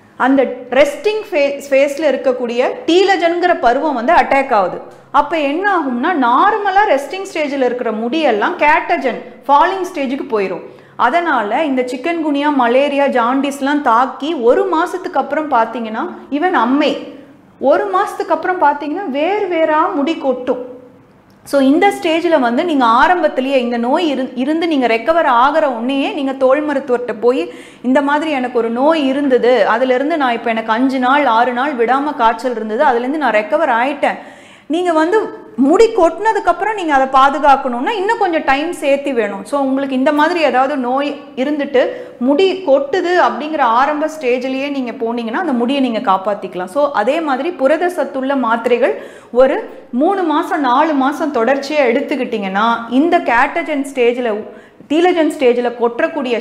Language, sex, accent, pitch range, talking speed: Tamil, female, native, 245-320 Hz, 135 wpm